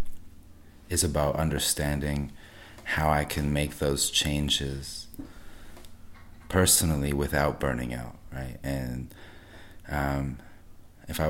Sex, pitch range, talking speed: male, 70-80 Hz, 95 wpm